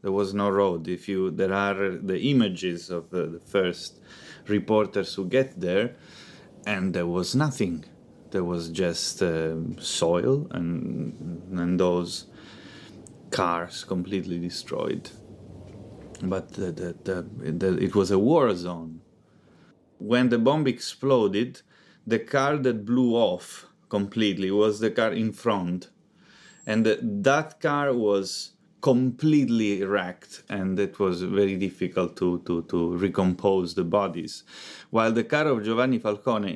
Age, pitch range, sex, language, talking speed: 30-49, 95-120 Hz, male, English, 135 wpm